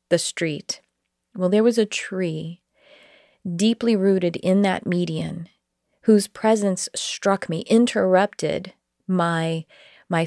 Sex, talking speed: female, 110 wpm